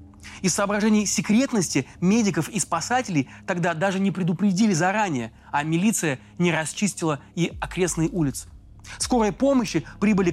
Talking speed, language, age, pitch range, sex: 120 wpm, Russian, 30-49, 150-195 Hz, male